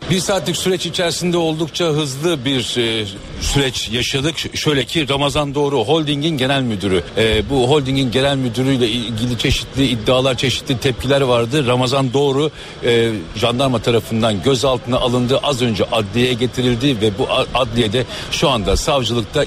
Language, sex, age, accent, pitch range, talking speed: Turkish, male, 60-79, native, 120-150 Hz, 135 wpm